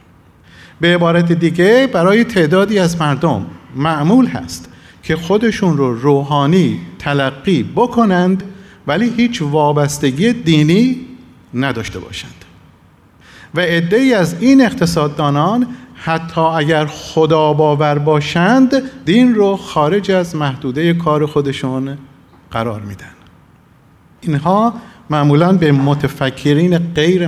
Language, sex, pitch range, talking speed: Persian, male, 145-200 Hz, 100 wpm